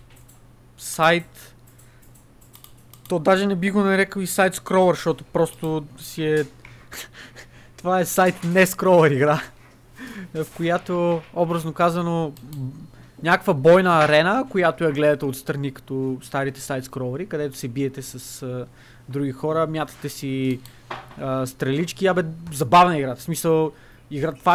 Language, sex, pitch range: Bulgarian, male, 130-165 Hz